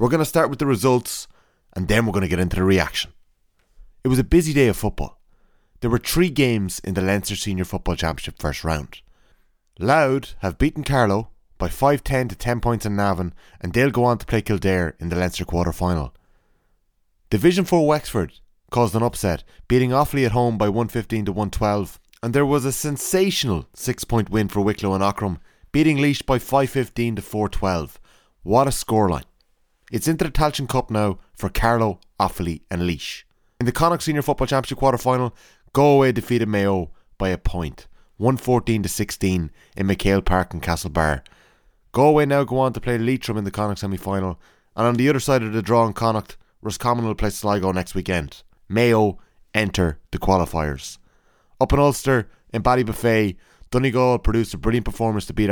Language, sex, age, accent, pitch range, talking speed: English, male, 30-49, Irish, 95-125 Hz, 190 wpm